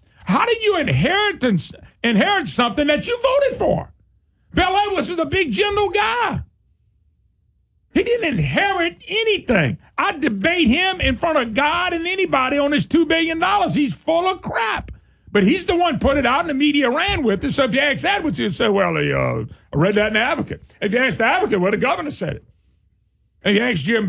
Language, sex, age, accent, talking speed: English, male, 50-69, American, 200 wpm